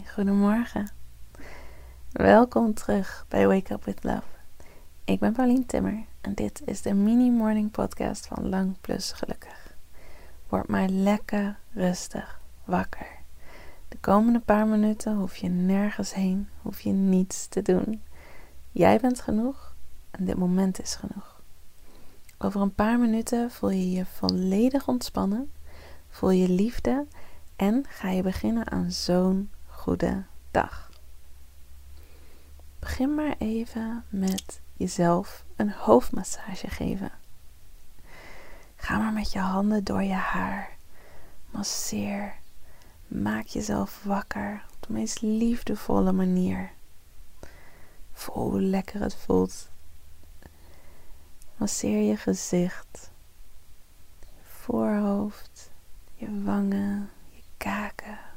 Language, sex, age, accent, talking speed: Dutch, female, 30-49, Dutch, 110 wpm